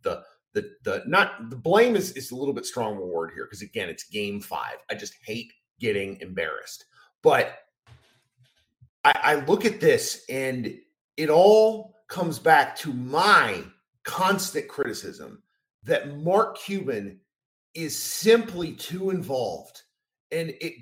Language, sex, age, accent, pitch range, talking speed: English, male, 30-49, American, 140-230 Hz, 140 wpm